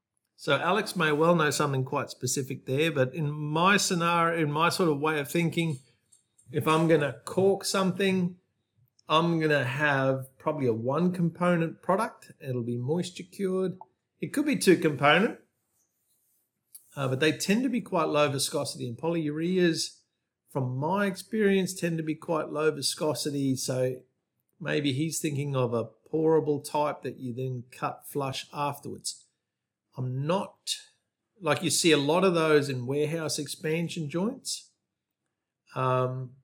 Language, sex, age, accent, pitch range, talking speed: English, male, 50-69, Australian, 130-165 Hz, 145 wpm